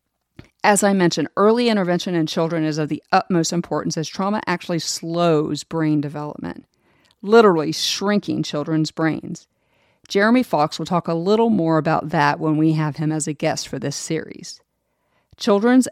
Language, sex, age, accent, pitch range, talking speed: English, female, 40-59, American, 155-185 Hz, 160 wpm